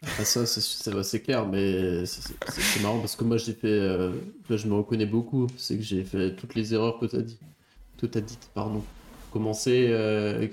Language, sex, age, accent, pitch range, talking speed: French, male, 20-39, French, 105-120 Hz, 205 wpm